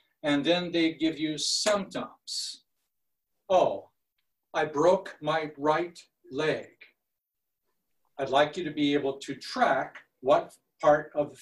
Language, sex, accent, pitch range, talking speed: English, male, American, 140-170 Hz, 125 wpm